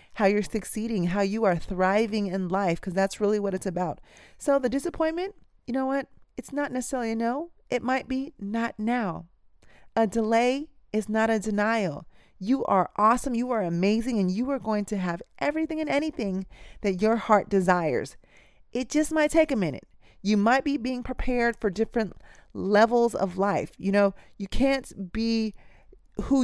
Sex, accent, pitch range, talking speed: female, American, 195-250 Hz, 175 wpm